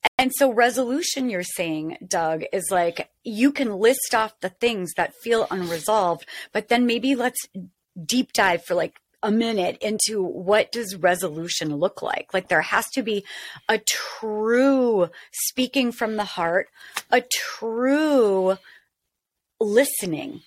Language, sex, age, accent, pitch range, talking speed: English, female, 30-49, American, 185-250 Hz, 140 wpm